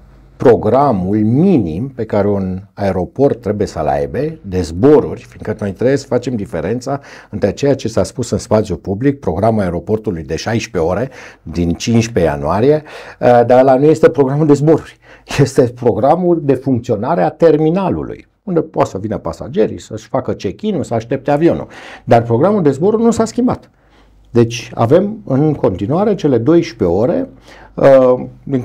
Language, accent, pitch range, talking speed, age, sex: Romanian, native, 110-160 Hz, 155 wpm, 60-79, male